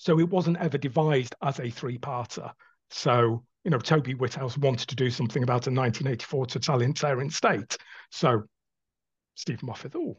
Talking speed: 155 wpm